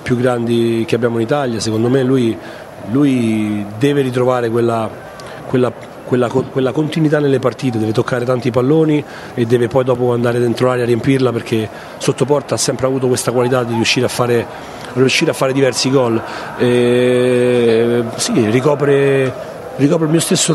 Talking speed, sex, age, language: 165 wpm, male, 40-59, Italian